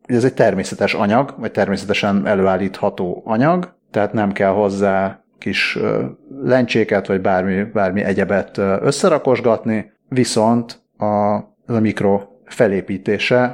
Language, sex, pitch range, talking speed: Hungarian, male, 100-120 Hz, 105 wpm